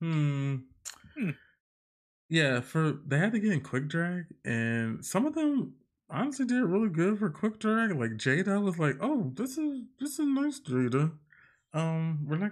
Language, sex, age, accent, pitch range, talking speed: English, male, 20-39, American, 120-175 Hz, 175 wpm